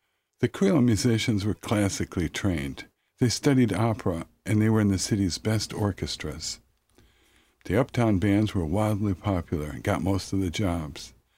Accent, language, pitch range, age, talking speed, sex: American, English, 95-120 Hz, 50-69, 155 wpm, male